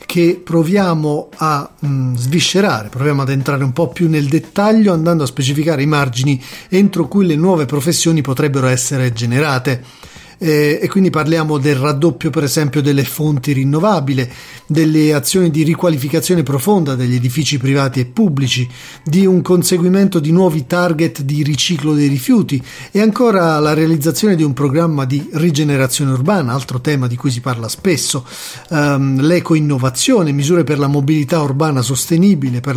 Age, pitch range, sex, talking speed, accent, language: 40-59, 140-175 Hz, male, 150 wpm, native, Italian